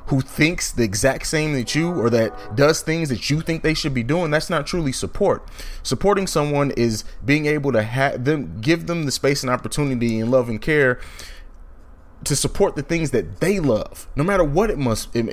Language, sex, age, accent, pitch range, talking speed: English, male, 30-49, American, 110-150 Hz, 210 wpm